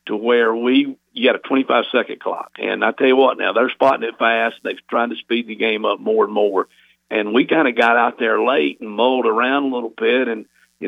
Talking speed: 245 wpm